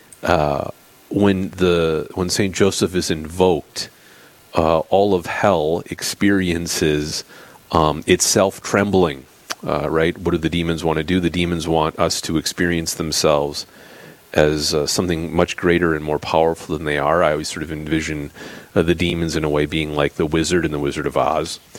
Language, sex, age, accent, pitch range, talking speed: English, male, 30-49, American, 75-85 Hz, 175 wpm